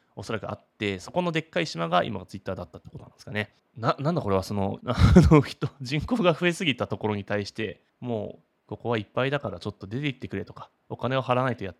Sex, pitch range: male, 100-140 Hz